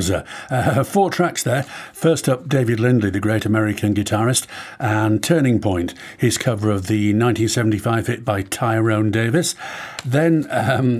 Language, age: English, 50-69